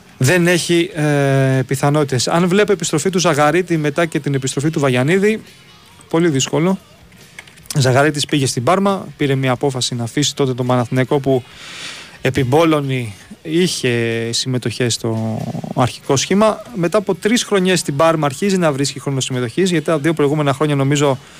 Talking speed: 150 wpm